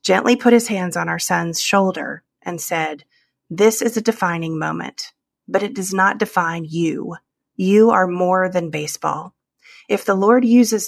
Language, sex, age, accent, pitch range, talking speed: English, female, 30-49, American, 170-220 Hz, 165 wpm